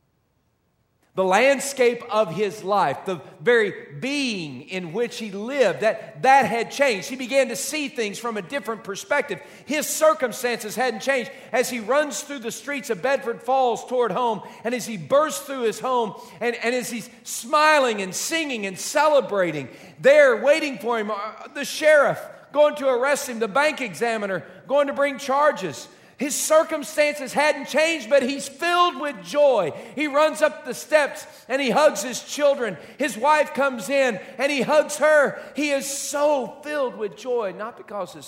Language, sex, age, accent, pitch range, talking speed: English, male, 40-59, American, 205-285 Hz, 170 wpm